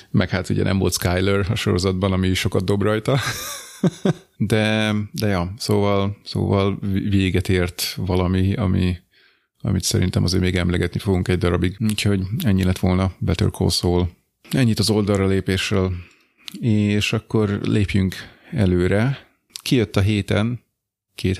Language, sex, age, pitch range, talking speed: Hungarian, male, 30-49, 95-105 Hz, 130 wpm